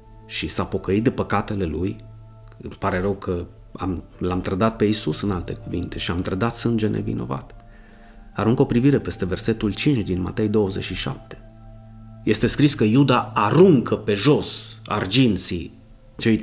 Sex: male